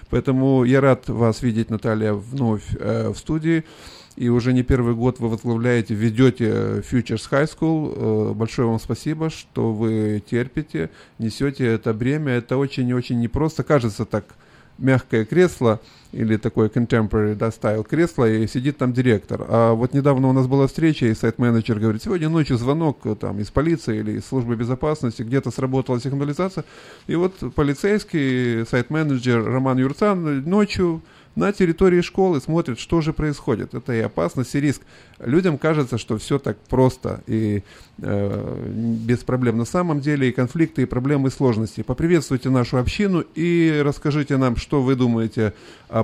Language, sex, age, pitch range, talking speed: Russian, male, 20-39, 115-145 Hz, 155 wpm